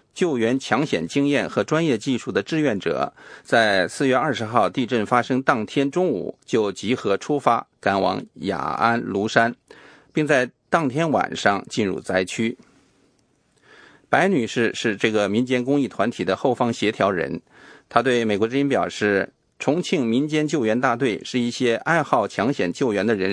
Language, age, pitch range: English, 50-69, 110-150 Hz